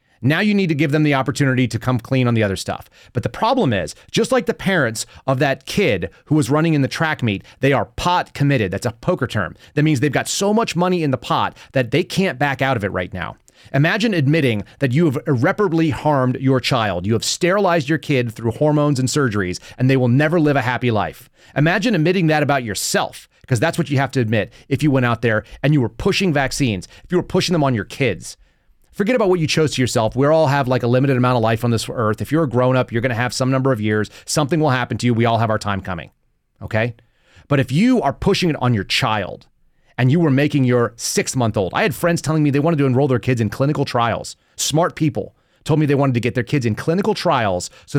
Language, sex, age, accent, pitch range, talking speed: English, male, 30-49, American, 120-155 Hz, 255 wpm